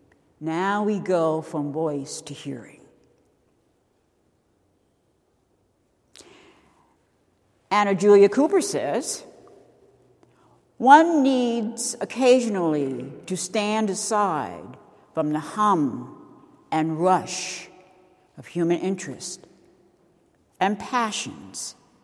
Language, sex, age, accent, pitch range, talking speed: English, female, 60-79, American, 160-225 Hz, 75 wpm